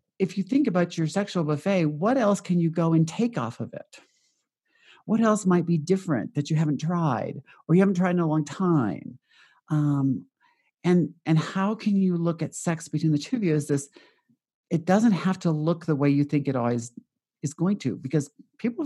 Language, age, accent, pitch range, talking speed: English, 50-69, American, 145-195 Hz, 210 wpm